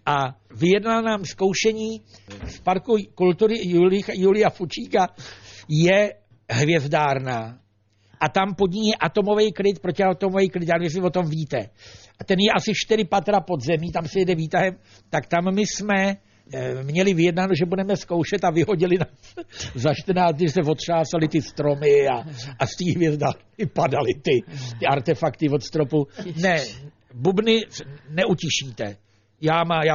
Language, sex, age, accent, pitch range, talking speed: Czech, male, 60-79, native, 125-180 Hz, 145 wpm